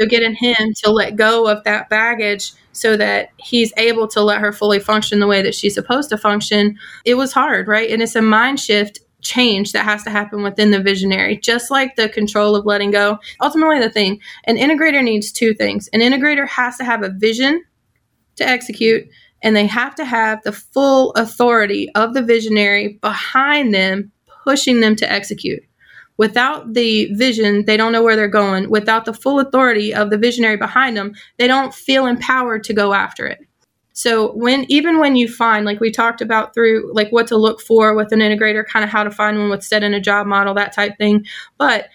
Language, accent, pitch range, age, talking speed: English, American, 210-235 Hz, 20-39, 205 wpm